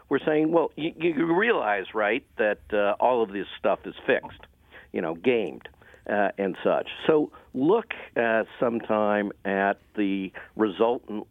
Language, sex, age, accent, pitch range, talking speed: English, male, 50-69, American, 105-120 Hz, 150 wpm